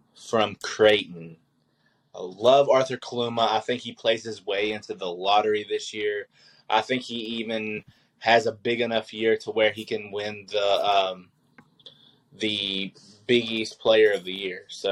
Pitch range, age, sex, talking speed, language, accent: 105-130 Hz, 20-39, male, 165 wpm, English, American